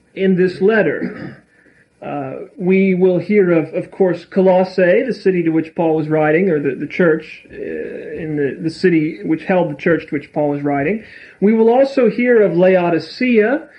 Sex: male